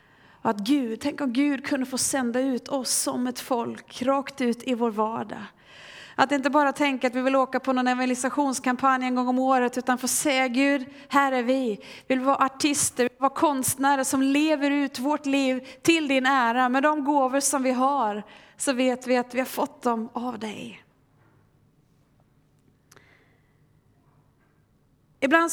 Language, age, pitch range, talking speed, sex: Swedish, 30-49, 220-270 Hz, 175 wpm, female